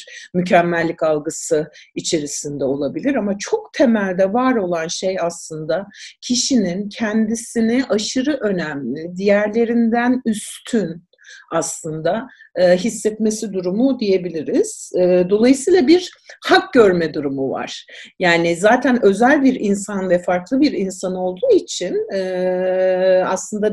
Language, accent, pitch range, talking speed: Turkish, native, 185-265 Hz, 100 wpm